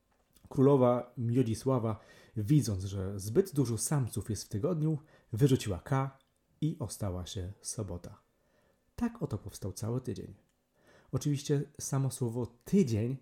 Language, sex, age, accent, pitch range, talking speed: Polish, male, 30-49, native, 110-155 Hz, 115 wpm